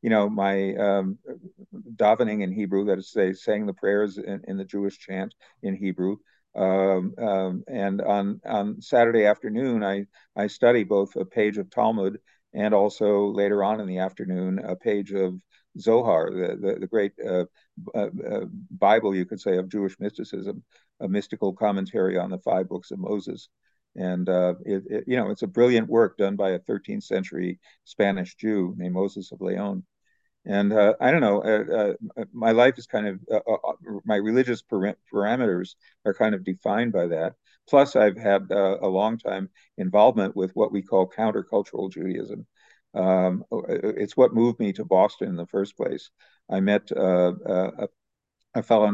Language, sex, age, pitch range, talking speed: English, male, 50-69, 95-105 Hz, 175 wpm